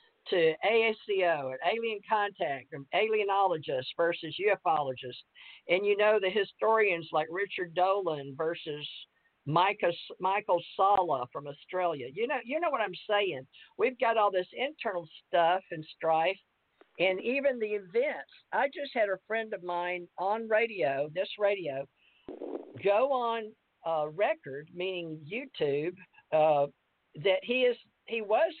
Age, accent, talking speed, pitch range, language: 50-69, American, 130 wpm, 155-210 Hz, English